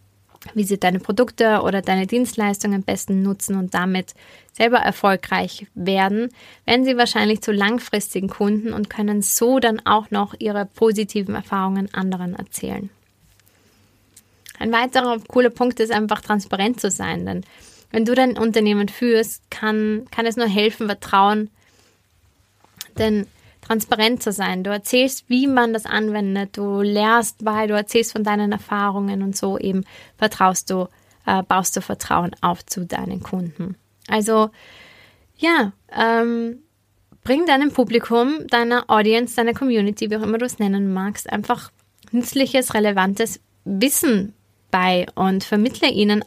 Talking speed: 140 wpm